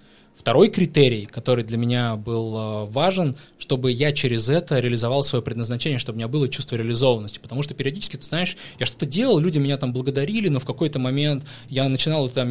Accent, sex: native, male